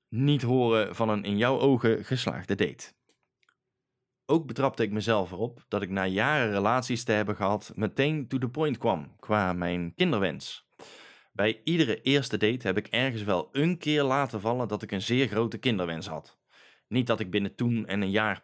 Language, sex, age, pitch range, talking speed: Dutch, male, 20-39, 105-130 Hz, 185 wpm